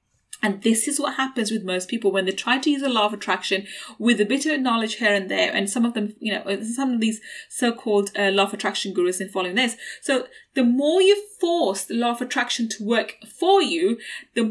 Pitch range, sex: 205-270 Hz, female